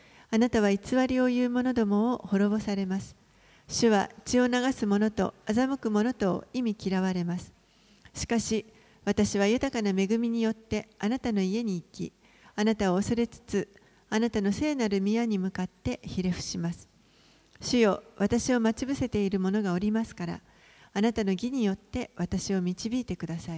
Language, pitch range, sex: Japanese, 190-235 Hz, female